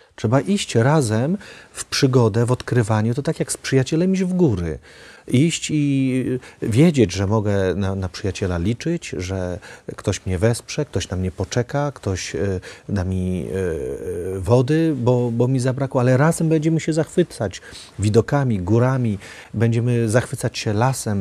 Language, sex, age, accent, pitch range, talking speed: Polish, male, 40-59, native, 100-140 Hz, 145 wpm